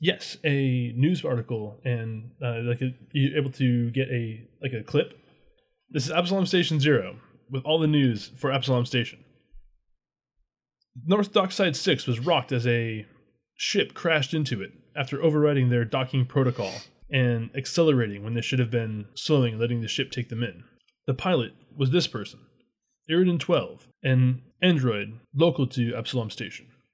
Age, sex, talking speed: 20-39, male, 155 wpm